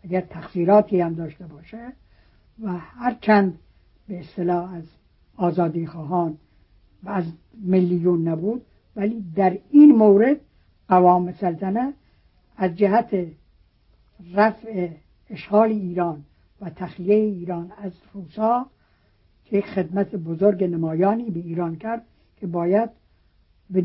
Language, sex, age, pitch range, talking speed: Persian, female, 60-79, 165-205 Hz, 105 wpm